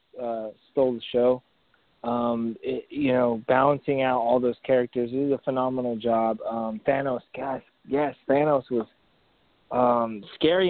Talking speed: 145 wpm